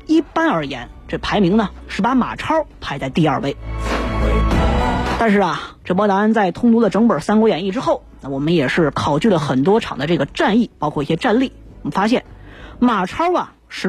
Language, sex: Chinese, female